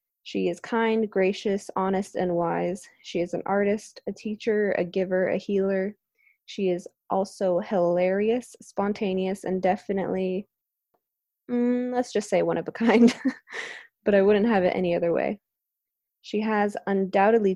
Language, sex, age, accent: English, female, 20-39, American